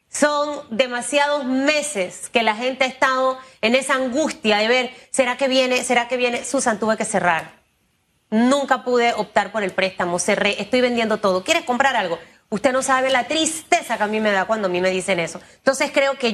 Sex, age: female, 30-49